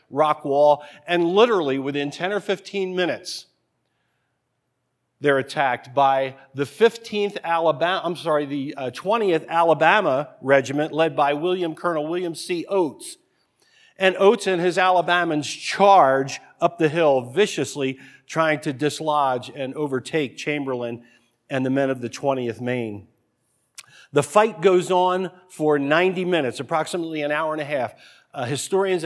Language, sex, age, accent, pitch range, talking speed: English, male, 50-69, American, 145-180 Hz, 140 wpm